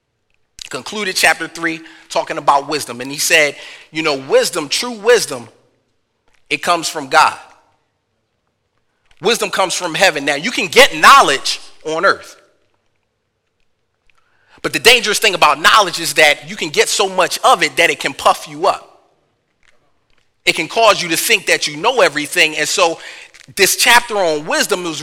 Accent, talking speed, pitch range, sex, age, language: American, 160 wpm, 145-205 Hz, male, 30-49, English